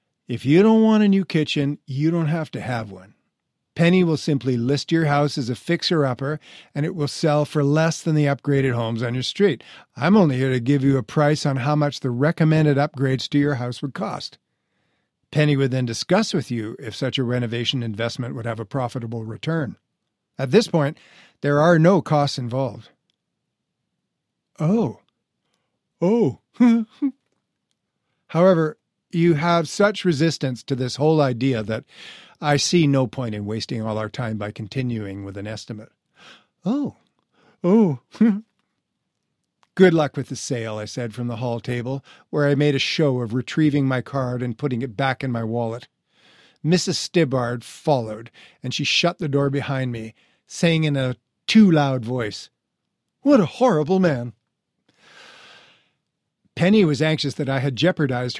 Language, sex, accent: English, male, American